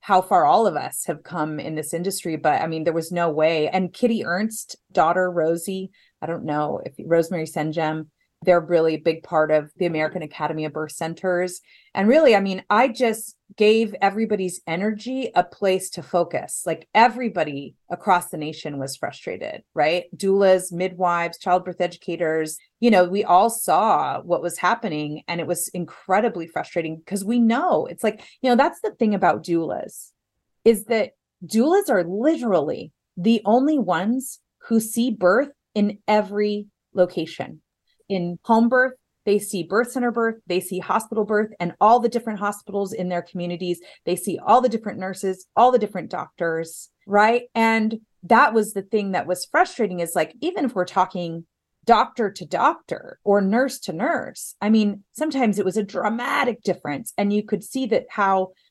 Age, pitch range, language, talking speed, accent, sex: 30-49, 175-225 Hz, English, 175 wpm, American, female